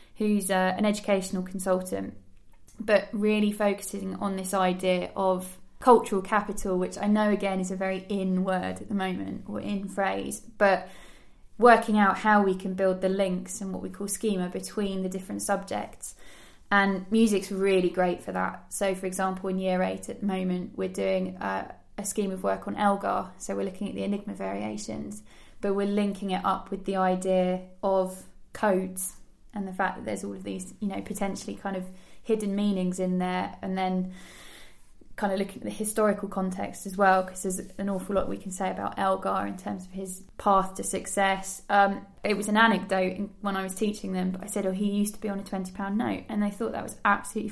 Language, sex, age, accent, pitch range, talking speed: English, female, 20-39, British, 185-205 Hz, 200 wpm